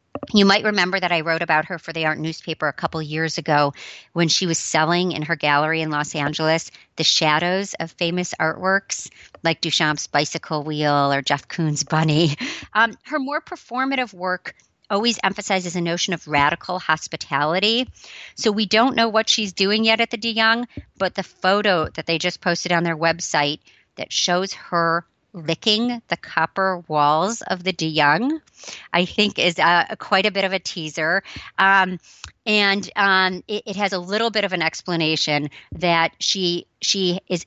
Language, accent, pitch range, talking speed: English, American, 155-195 Hz, 175 wpm